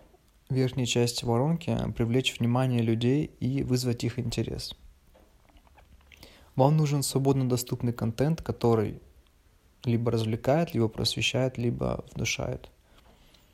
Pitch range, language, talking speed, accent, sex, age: 115-130 Hz, Russian, 100 wpm, native, male, 20-39